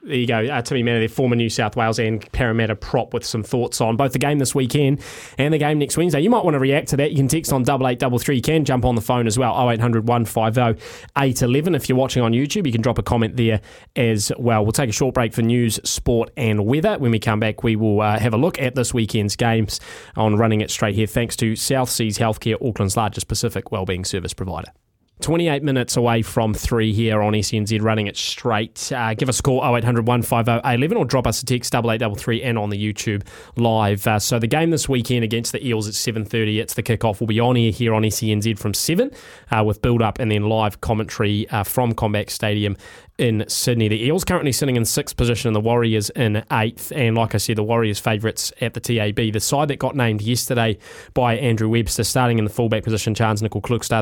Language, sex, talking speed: English, male, 235 wpm